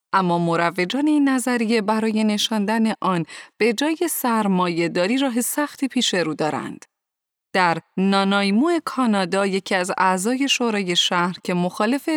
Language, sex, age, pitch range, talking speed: Persian, female, 30-49, 175-240 Hz, 130 wpm